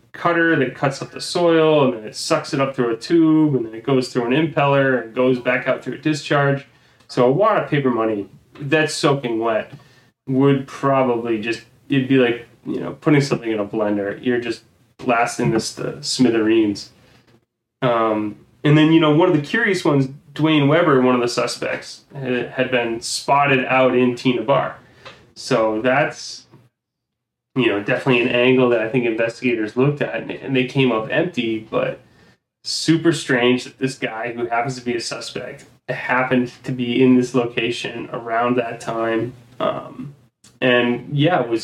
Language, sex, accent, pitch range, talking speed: English, male, American, 120-140 Hz, 180 wpm